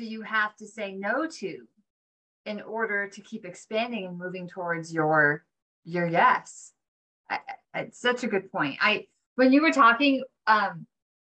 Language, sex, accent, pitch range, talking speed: English, female, American, 195-260 Hz, 160 wpm